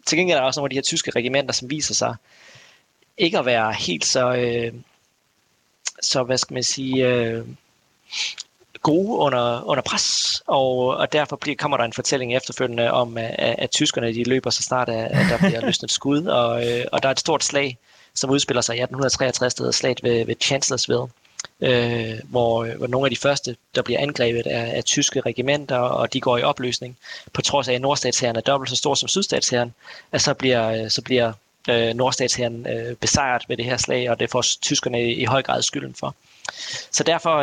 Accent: native